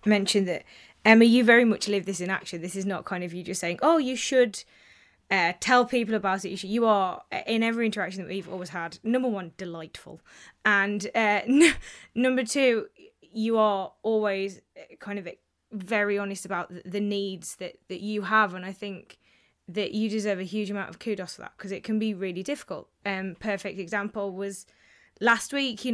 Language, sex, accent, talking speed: English, female, British, 195 wpm